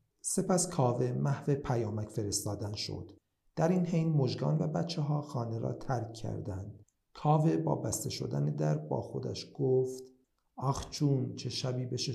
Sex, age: male, 50-69